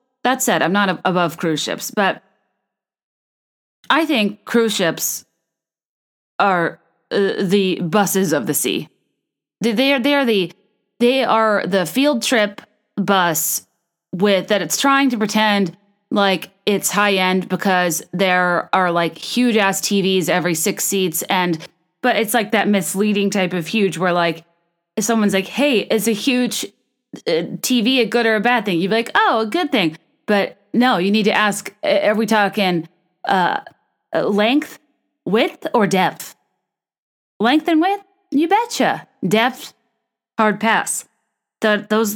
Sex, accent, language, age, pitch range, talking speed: female, American, English, 20-39, 180-230 Hz, 150 wpm